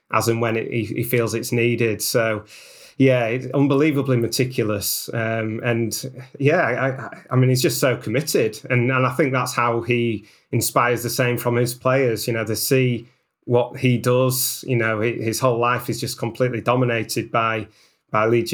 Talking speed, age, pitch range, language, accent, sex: 185 wpm, 30-49, 115-130 Hz, English, British, male